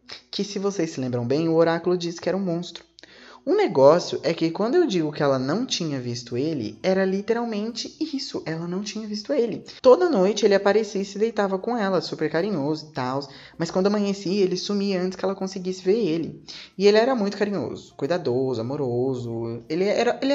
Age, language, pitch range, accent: 20-39, Portuguese, 140-205 Hz, Brazilian